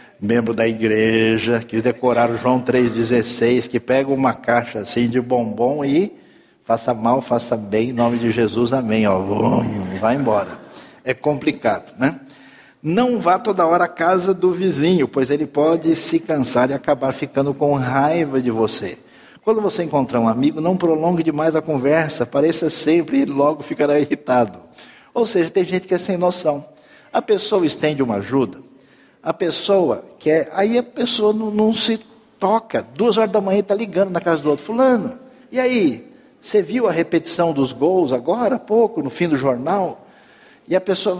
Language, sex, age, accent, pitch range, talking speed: Portuguese, male, 60-79, Brazilian, 130-190 Hz, 175 wpm